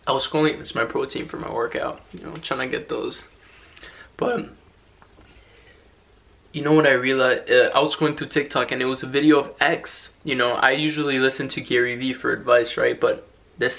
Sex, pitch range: male, 120-155 Hz